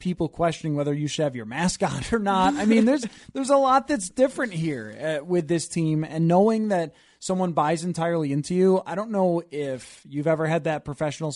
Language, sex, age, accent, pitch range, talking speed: English, male, 20-39, American, 145-185 Hz, 205 wpm